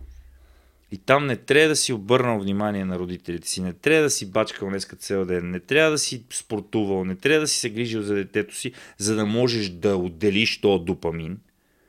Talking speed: 210 wpm